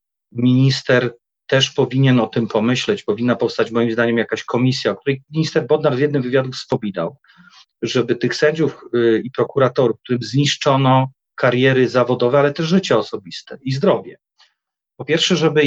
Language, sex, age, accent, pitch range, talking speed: Polish, male, 40-59, native, 120-150 Hz, 145 wpm